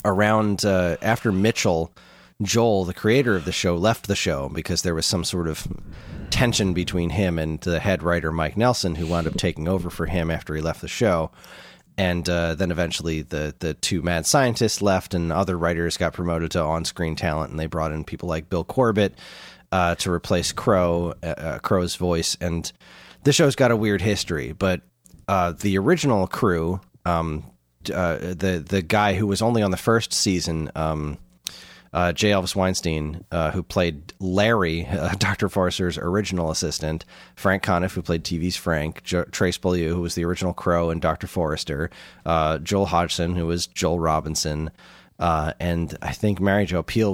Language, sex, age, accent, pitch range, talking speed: English, male, 30-49, American, 80-95 Hz, 180 wpm